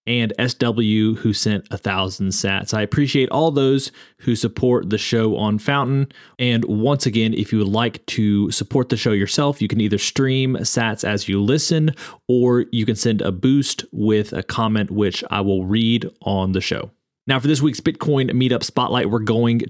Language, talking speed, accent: English, 190 wpm, American